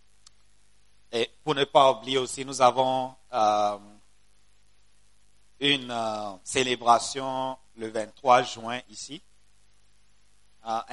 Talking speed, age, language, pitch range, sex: 95 wpm, 50-69, English, 105-125 Hz, male